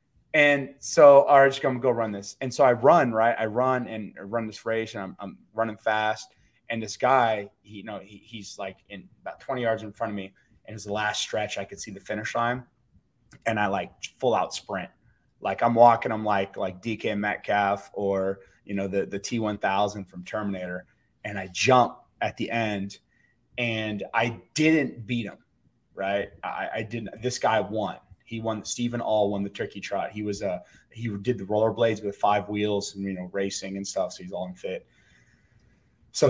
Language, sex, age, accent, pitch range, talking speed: English, male, 30-49, American, 105-130 Hz, 205 wpm